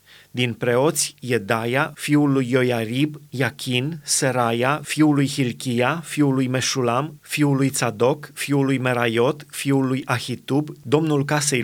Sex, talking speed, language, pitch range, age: male, 130 wpm, Romanian, 125-150 Hz, 30-49